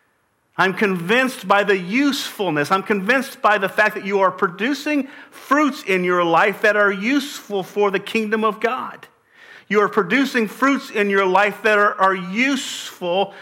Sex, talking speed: male, 165 wpm